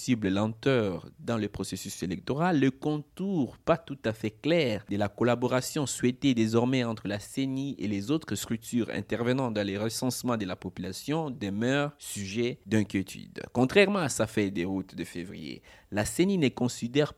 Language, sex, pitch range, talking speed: French, male, 105-145 Hz, 160 wpm